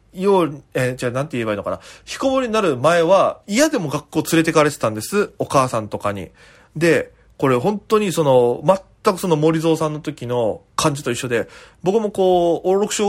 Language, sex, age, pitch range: Japanese, male, 20-39, 135-225 Hz